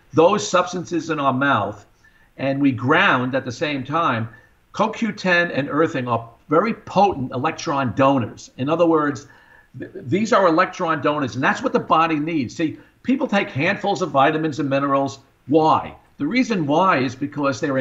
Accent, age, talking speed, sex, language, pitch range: American, 50-69, 165 wpm, male, English, 130-170 Hz